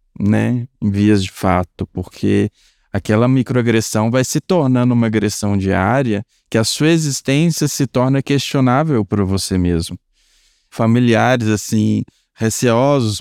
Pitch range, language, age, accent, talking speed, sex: 100-130 Hz, Portuguese, 20-39, Brazilian, 125 wpm, male